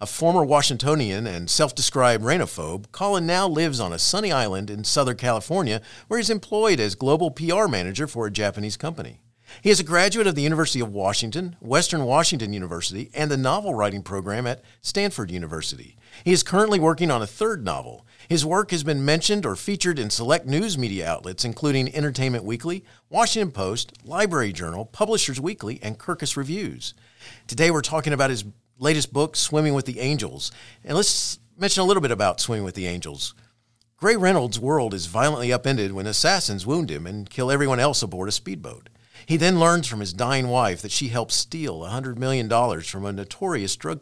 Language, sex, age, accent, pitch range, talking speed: English, male, 50-69, American, 110-160 Hz, 185 wpm